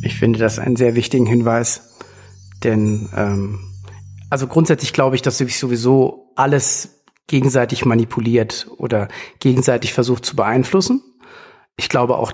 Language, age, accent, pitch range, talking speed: German, 50-69, German, 125-150 Hz, 130 wpm